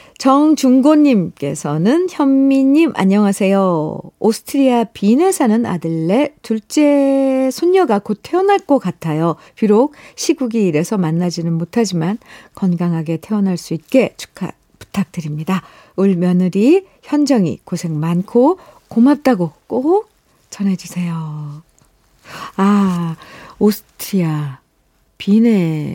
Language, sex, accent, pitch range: Korean, female, native, 170-245 Hz